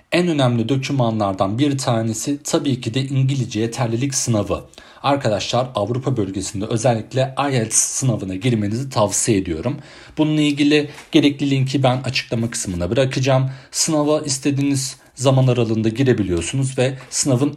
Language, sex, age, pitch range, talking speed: Turkish, male, 40-59, 115-150 Hz, 120 wpm